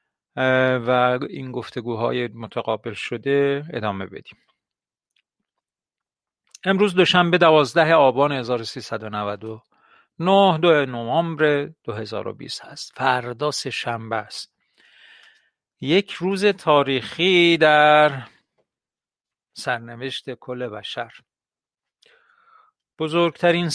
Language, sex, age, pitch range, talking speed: Persian, male, 50-69, 125-155 Hz, 75 wpm